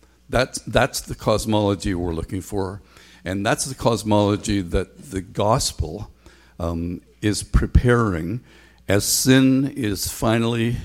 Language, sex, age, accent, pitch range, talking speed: English, male, 60-79, American, 90-110 Hz, 115 wpm